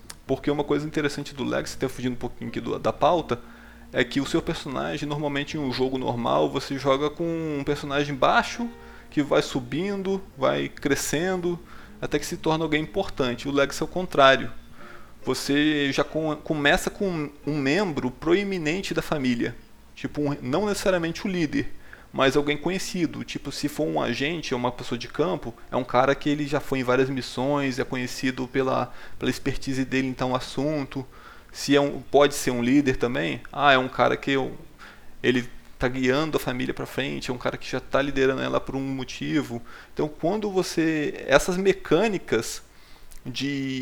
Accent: Brazilian